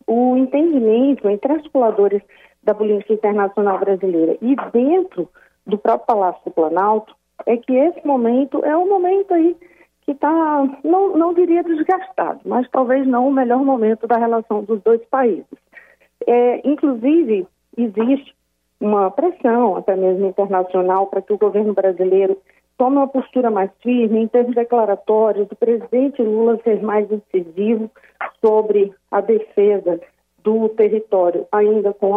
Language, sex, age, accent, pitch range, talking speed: Portuguese, female, 40-59, Brazilian, 210-275 Hz, 140 wpm